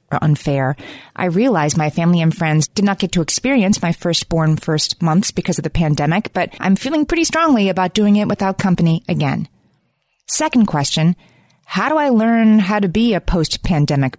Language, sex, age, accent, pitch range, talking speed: English, female, 30-49, American, 160-210 Hz, 180 wpm